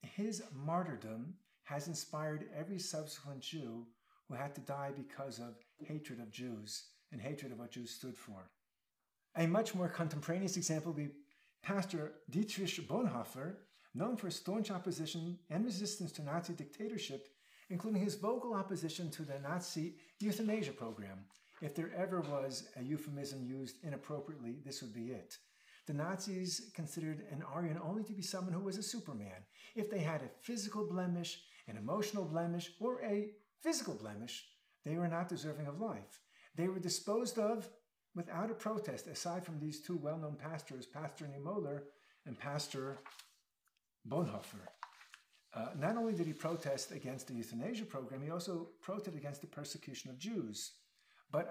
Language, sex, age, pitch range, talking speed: English, male, 50-69, 140-190 Hz, 155 wpm